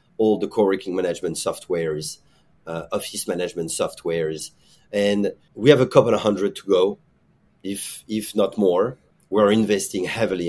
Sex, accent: male, French